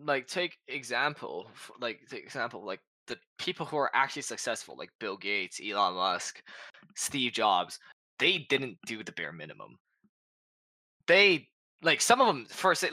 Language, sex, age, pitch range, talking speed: English, male, 10-29, 115-165 Hz, 150 wpm